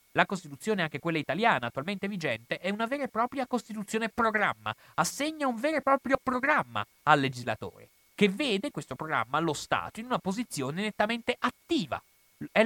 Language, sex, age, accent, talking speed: Italian, male, 30-49, native, 160 wpm